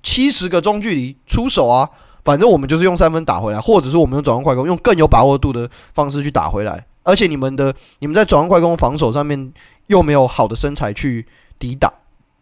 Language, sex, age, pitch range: Chinese, male, 20-39, 130-165 Hz